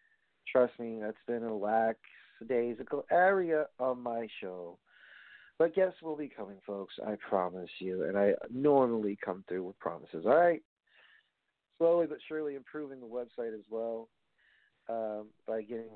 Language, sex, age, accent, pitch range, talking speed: English, male, 40-59, American, 115-150 Hz, 145 wpm